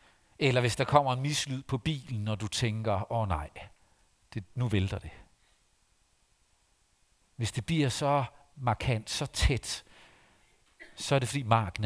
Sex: male